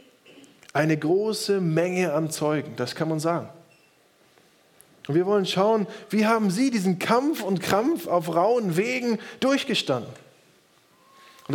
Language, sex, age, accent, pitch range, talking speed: German, male, 20-39, German, 175-225 Hz, 130 wpm